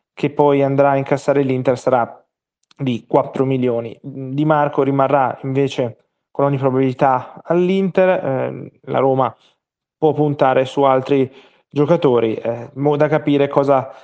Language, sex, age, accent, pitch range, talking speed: Italian, male, 20-39, native, 130-150 Hz, 125 wpm